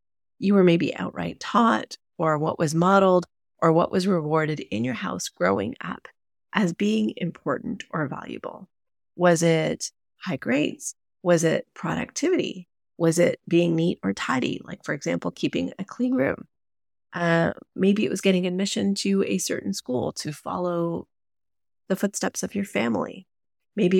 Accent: American